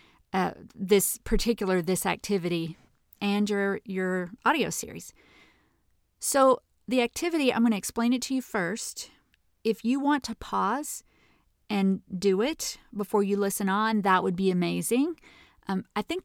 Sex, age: female, 40-59